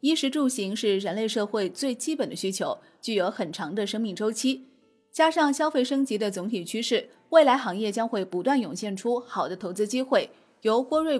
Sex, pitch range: female, 210-265 Hz